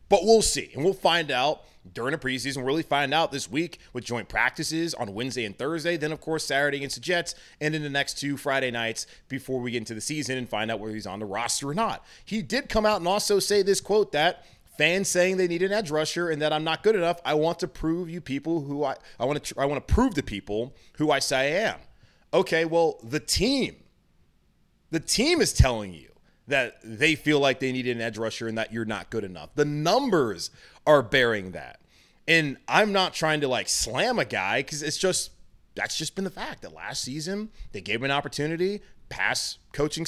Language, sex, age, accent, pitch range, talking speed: English, male, 30-49, American, 130-180 Hz, 230 wpm